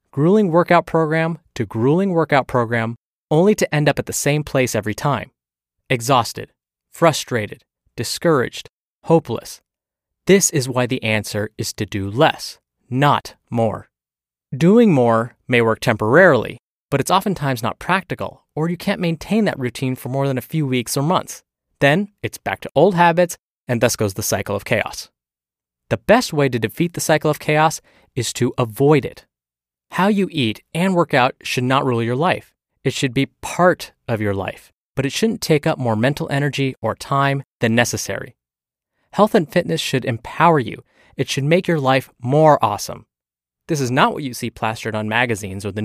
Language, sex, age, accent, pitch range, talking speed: English, male, 20-39, American, 110-160 Hz, 180 wpm